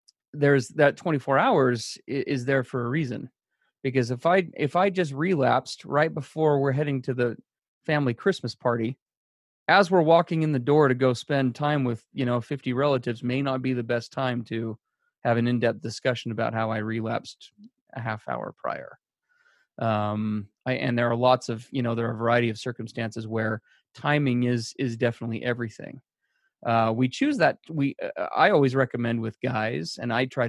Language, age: English, 30-49